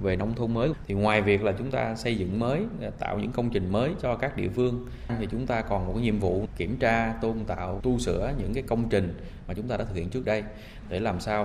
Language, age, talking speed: Vietnamese, 20-39, 260 wpm